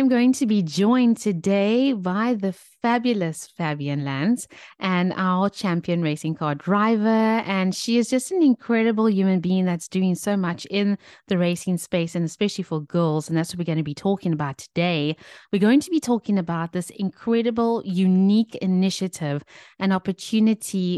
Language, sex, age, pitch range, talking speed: English, female, 30-49, 165-205 Hz, 170 wpm